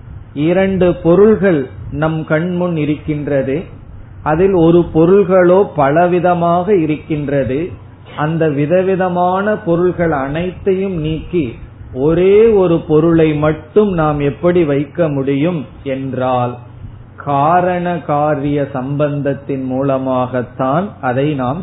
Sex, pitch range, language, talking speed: male, 130-170 Hz, Tamil, 85 wpm